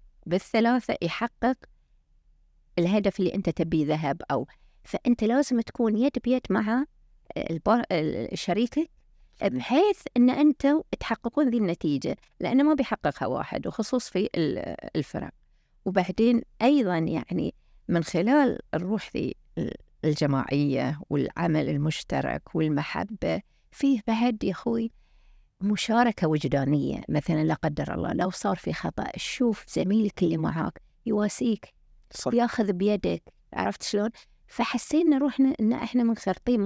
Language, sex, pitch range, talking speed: Arabic, female, 175-250 Hz, 110 wpm